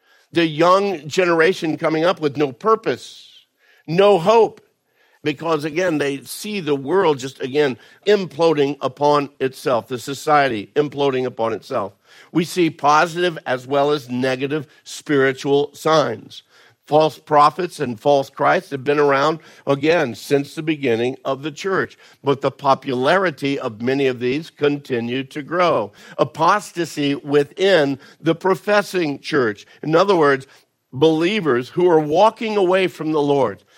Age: 50-69